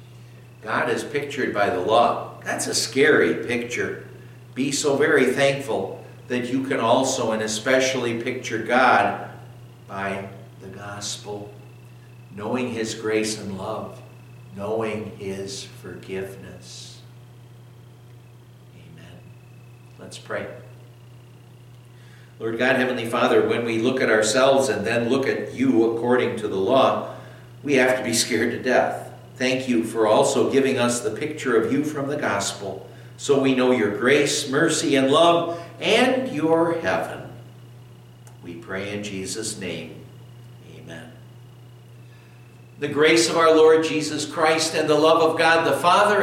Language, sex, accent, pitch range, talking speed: English, male, American, 115-135 Hz, 135 wpm